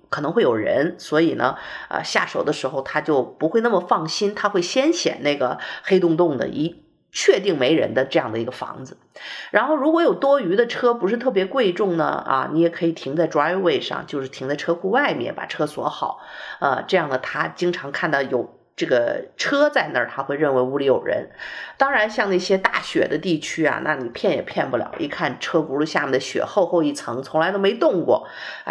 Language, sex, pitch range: Chinese, female, 160-250 Hz